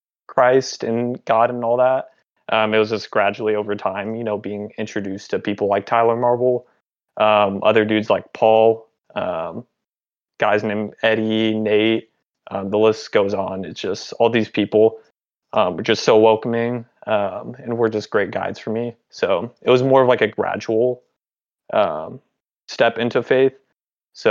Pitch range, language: 105-120 Hz, English